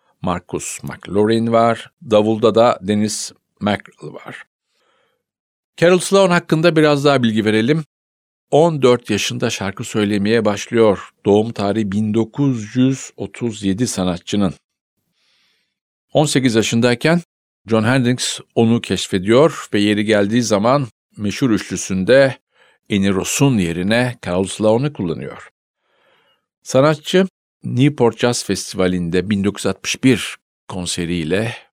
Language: Turkish